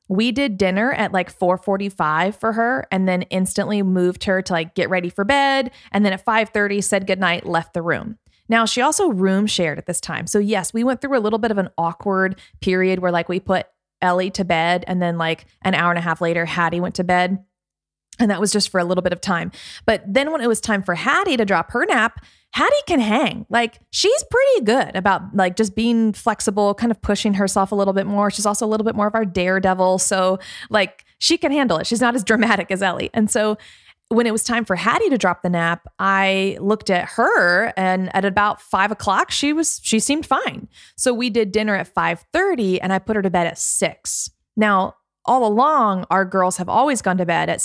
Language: English